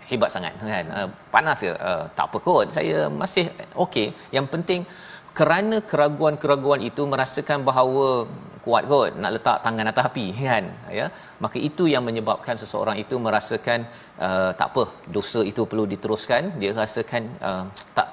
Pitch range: 110-140 Hz